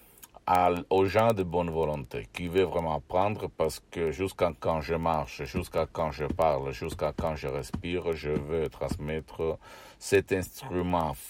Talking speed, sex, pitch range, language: 150 wpm, male, 80-95 Hz, Italian